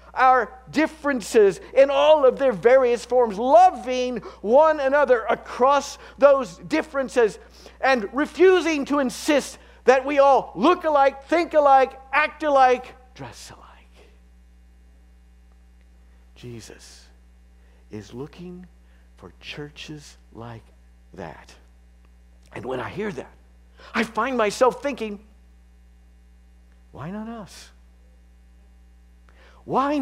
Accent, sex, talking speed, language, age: American, male, 100 wpm, English, 50-69